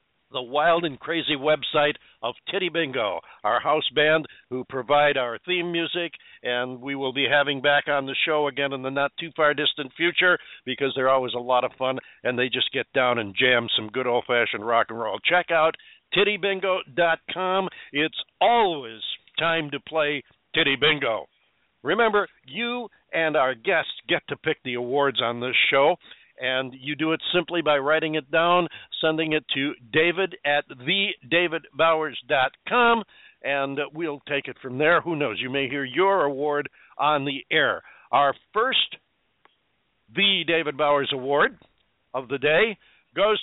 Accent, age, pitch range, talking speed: American, 50-69, 130-165 Hz, 160 wpm